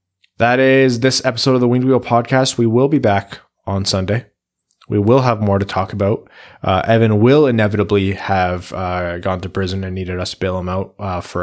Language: English